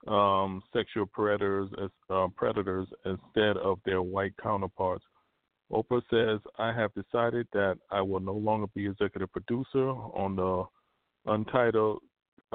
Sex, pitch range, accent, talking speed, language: male, 100-115 Hz, American, 130 wpm, English